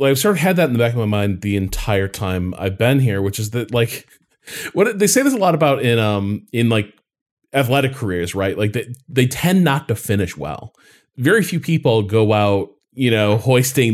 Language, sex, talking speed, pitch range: English, male, 220 wpm, 100-130 Hz